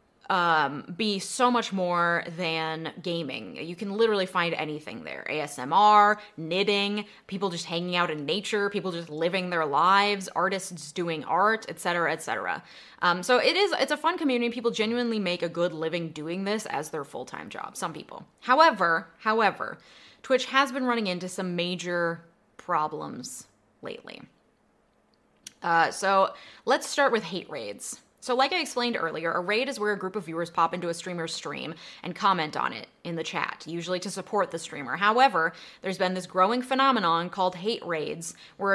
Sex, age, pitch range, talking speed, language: female, 20-39, 170-220 Hz, 175 wpm, English